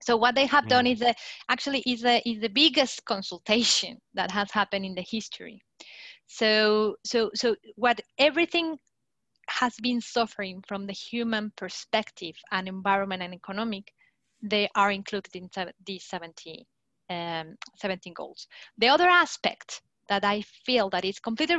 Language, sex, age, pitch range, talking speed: English, female, 30-49, 195-235 Hz, 150 wpm